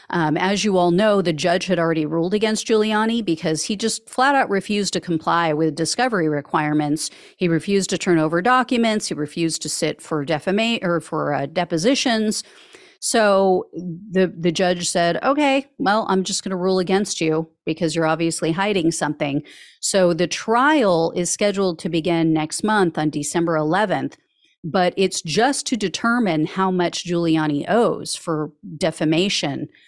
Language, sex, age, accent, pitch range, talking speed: English, female, 40-59, American, 165-220 Hz, 165 wpm